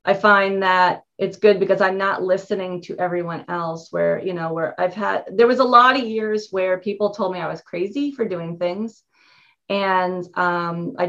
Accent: American